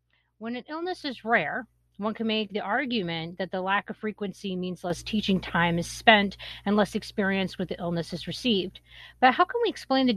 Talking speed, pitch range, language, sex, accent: 205 wpm, 170-240 Hz, English, female, American